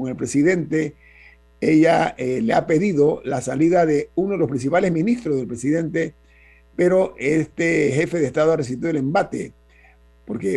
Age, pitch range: 50-69, 125-180 Hz